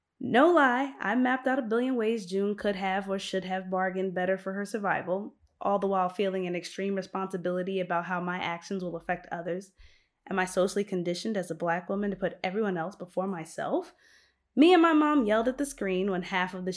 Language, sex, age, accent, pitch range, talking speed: English, female, 20-39, American, 185-230 Hz, 210 wpm